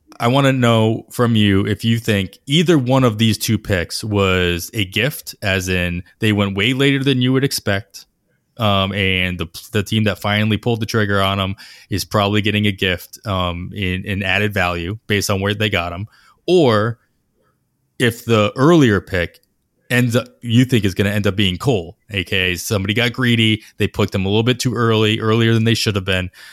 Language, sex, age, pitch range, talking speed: English, male, 20-39, 95-120 Hz, 205 wpm